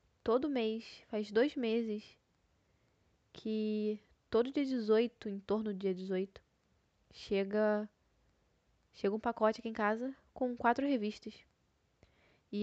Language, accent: Portuguese, Brazilian